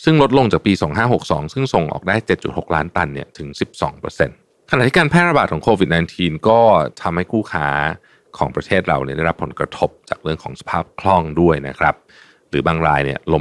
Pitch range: 75-110 Hz